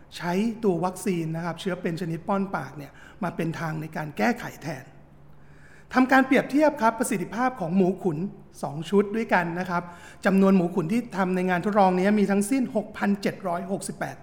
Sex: male